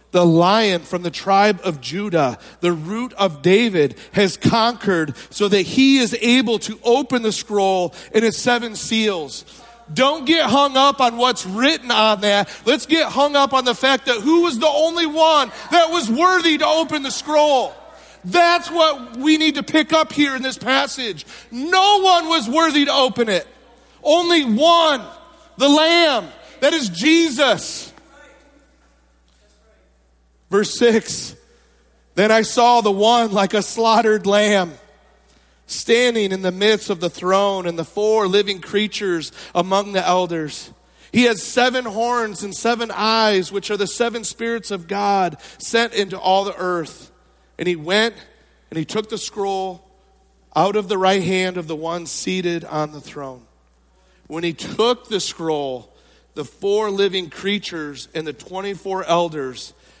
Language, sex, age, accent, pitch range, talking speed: English, male, 40-59, American, 185-260 Hz, 160 wpm